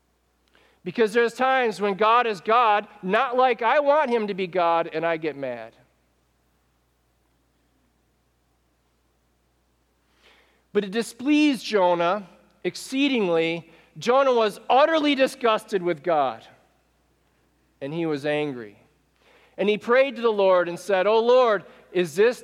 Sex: male